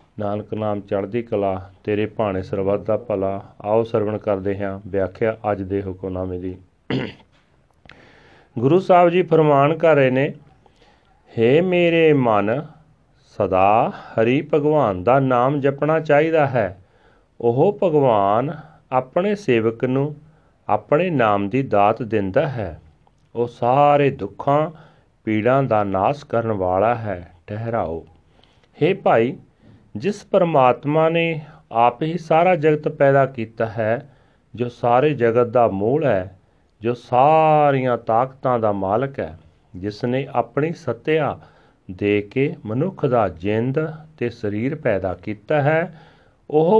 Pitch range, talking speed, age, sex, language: 105-145 Hz, 120 wpm, 40-59, male, Punjabi